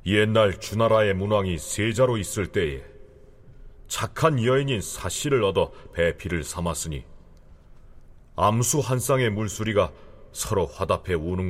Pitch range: 85-115 Hz